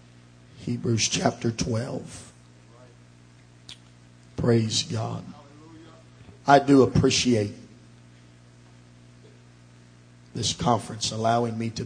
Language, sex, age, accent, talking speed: English, male, 40-59, American, 65 wpm